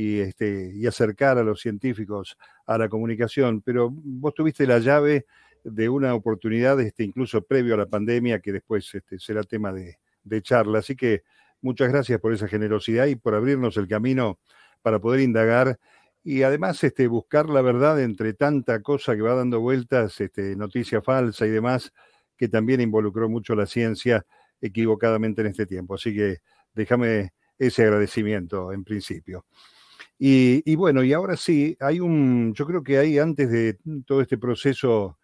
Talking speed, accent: 160 wpm, Argentinian